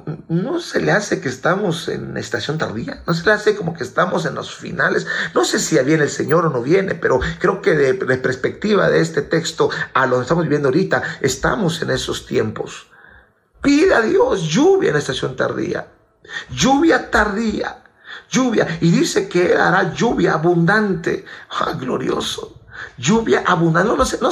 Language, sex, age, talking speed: Spanish, male, 50-69, 180 wpm